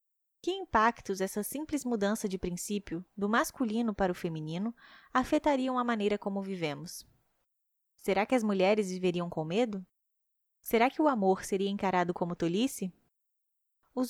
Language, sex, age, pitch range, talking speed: Portuguese, female, 10-29, 190-245 Hz, 140 wpm